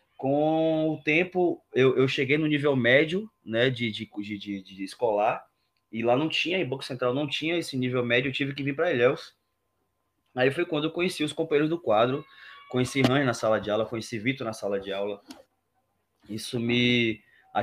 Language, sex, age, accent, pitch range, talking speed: Portuguese, male, 20-39, Brazilian, 115-140 Hz, 195 wpm